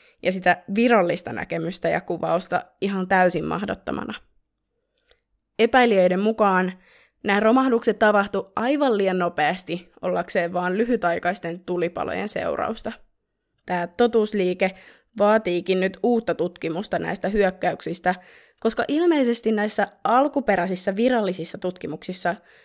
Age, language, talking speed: 20-39, Finnish, 95 wpm